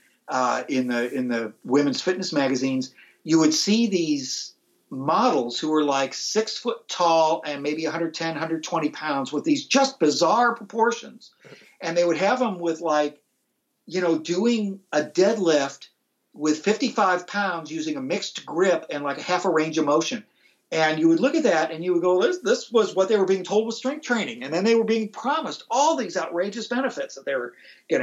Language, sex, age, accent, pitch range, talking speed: English, male, 50-69, American, 155-225 Hz, 195 wpm